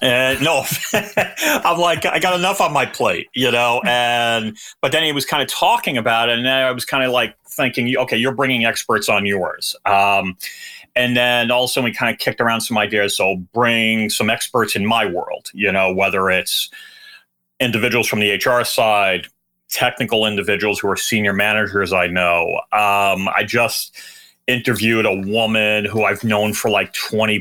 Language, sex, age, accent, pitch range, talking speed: English, male, 30-49, American, 105-130 Hz, 180 wpm